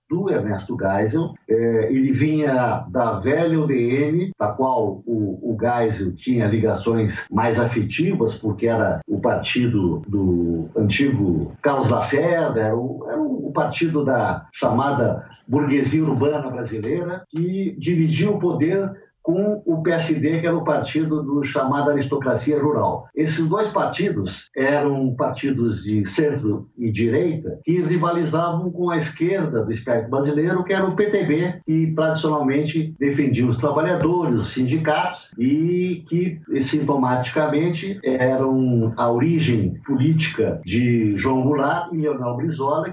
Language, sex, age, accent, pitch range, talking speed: Portuguese, male, 60-79, Brazilian, 120-165 Hz, 125 wpm